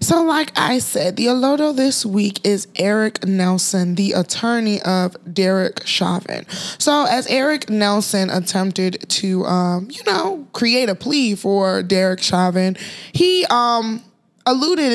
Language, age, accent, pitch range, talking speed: English, 20-39, American, 130-195 Hz, 135 wpm